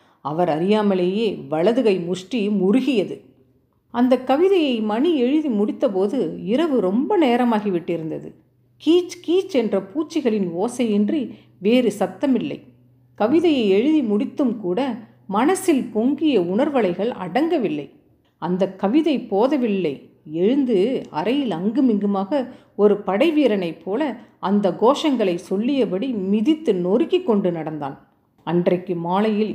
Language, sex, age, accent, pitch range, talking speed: Tamil, female, 40-59, native, 195-270 Hz, 95 wpm